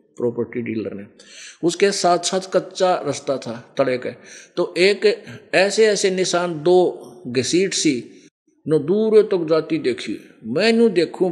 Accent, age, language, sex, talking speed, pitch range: native, 50-69, Hindi, male, 150 wpm, 140-190 Hz